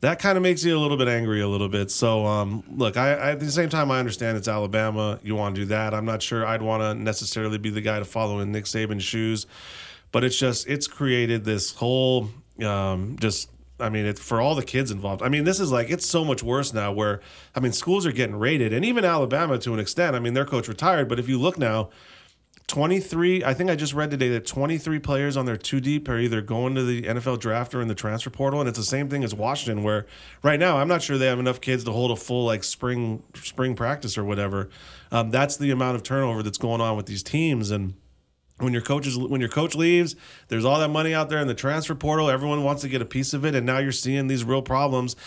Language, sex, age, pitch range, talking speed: English, male, 30-49, 110-140 Hz, 260 wpm